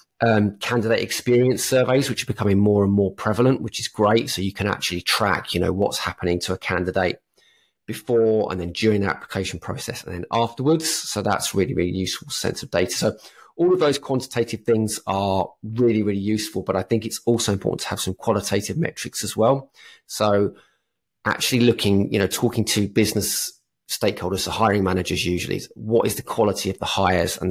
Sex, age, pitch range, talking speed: male, 30-49, 95-115 Hz, 195 wpm